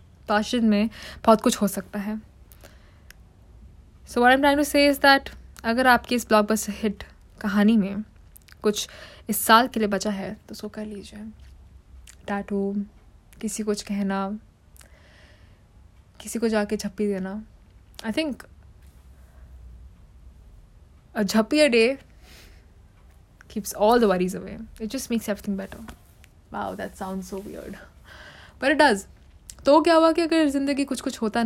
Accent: native